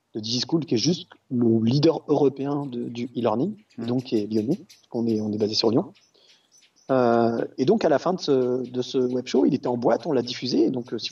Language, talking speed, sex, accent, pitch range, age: French, 220 wpm, male, French, 115-150 Hz, 30-49